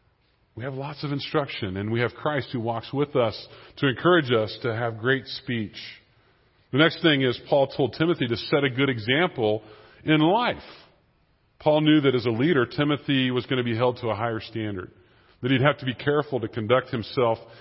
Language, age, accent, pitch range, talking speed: English, 40-59, American, 110-140 Hz, 200 wpm